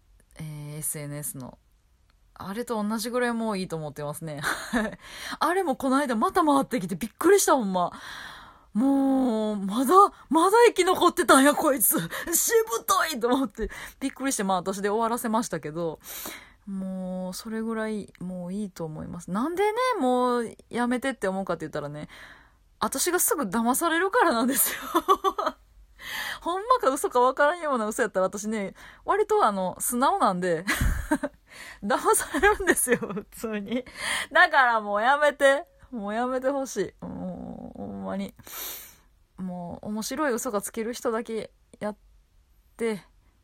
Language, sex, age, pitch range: Japanese, female, 20-39, 180-275 Hz